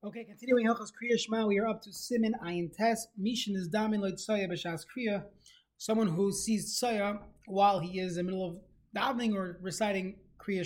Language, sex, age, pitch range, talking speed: English, male, 20-39, 185-230 Hz, 140 wpm